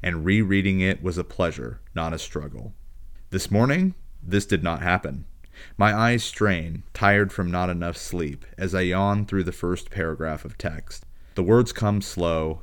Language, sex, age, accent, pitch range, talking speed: English, male, 30-49, American, 80-95 Hz, 170 wpm